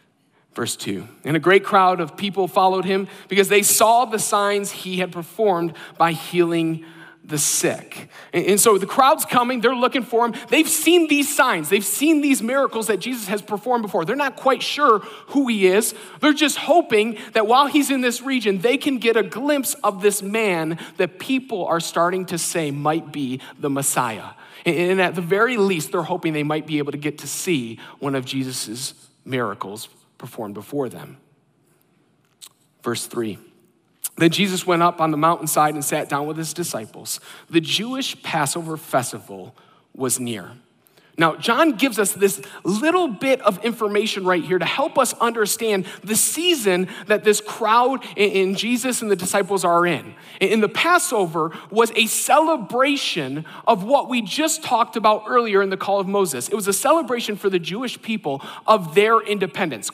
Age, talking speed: 40-59, 175 wpm